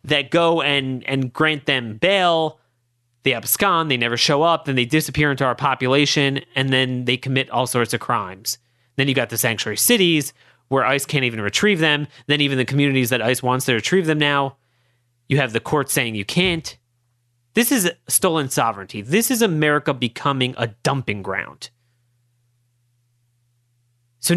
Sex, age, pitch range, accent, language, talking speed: male, 30-49, 120-165 Hz, American, English, 170 wpm